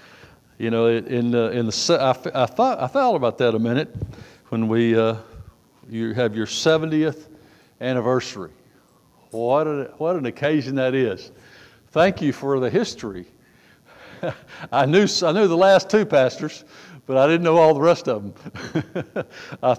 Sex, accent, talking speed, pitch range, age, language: male, American, 160 wpm, 110-140 Hz, 60-79, English